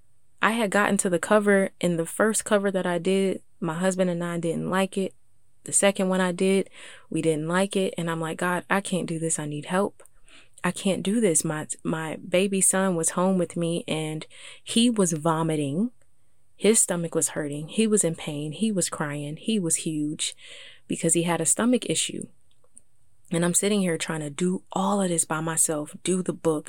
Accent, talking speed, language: American, 205 wpm, English